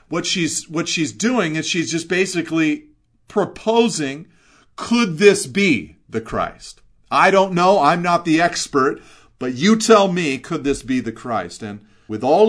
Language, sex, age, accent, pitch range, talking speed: English, male, 40-59, American, 130-185 Hz, 165 wpm